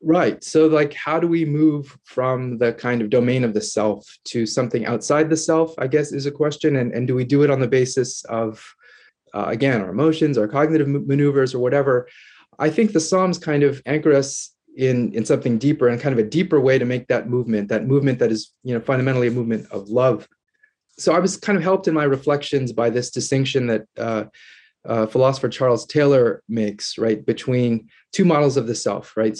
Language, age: English, 30-49